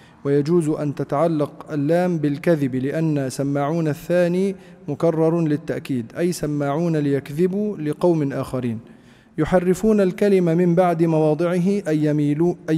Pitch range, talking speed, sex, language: 145-175 Hz, 100 wpm, male, Arabic